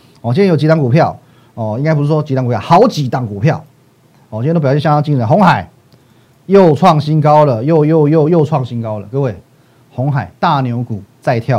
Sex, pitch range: male, 120-155 Hz